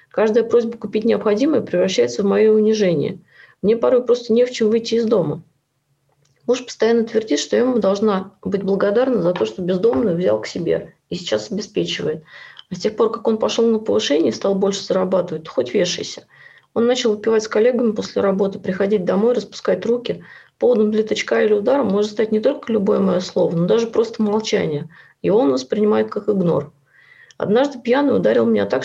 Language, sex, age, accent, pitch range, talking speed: Russian, female, 30-49, native, 185-230 Hz, 185 wpm